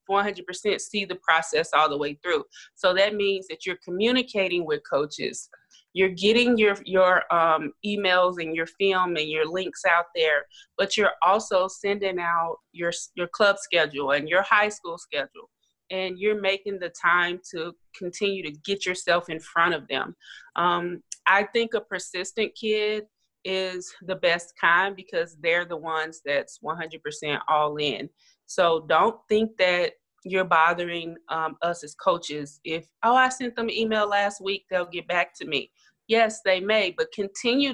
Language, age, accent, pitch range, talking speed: English, 30-49, American, 170-205 Hz, 165 wpm